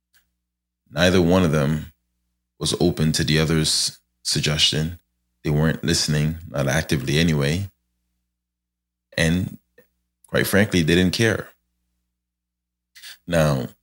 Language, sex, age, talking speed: English, male, 20-39, 100 wpm